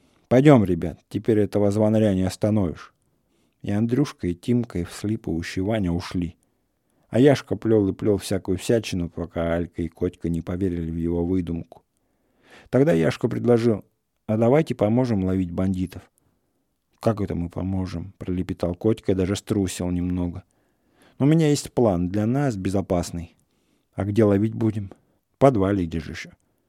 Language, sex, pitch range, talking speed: English, male, 90-115 Hz, 140 wpm